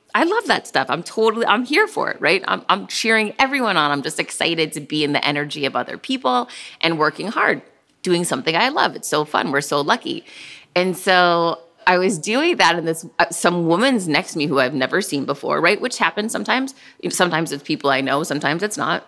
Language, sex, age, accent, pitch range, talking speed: English, female, 30-49, American, 160-220 Hz, 220 wpm